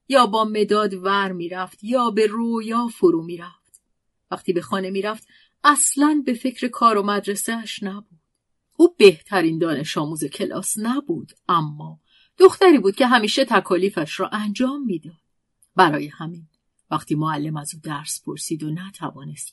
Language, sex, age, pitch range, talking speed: Persian, female, 40-59, 155-210 Hz, 155 wpm